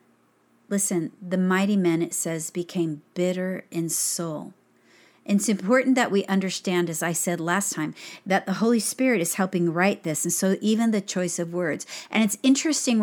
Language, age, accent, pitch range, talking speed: English, 50-69, American, 170-215 Hz, 175 wpm